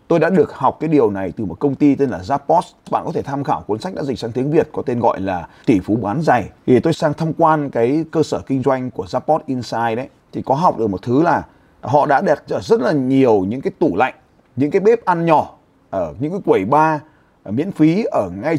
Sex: male